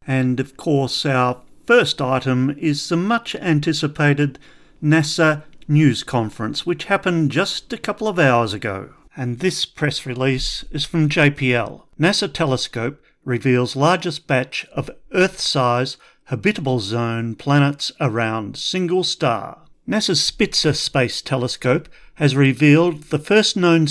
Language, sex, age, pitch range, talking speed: English, male, 40-59, 130-160 Hz, 125 wpm